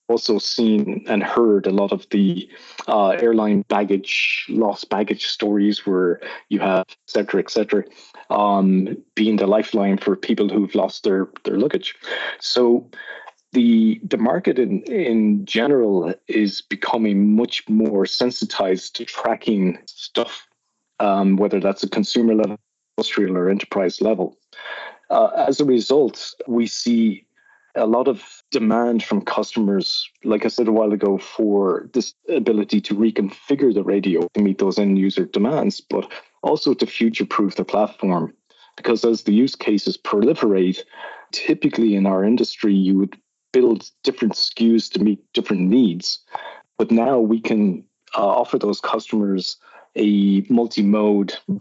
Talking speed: 140 wpm